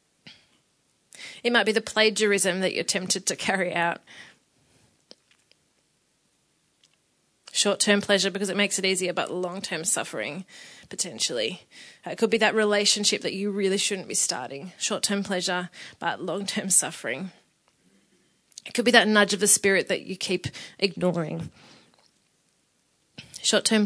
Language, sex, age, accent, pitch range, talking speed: English, female, 30-49, Australian, 185-215 Hz, 130 wpm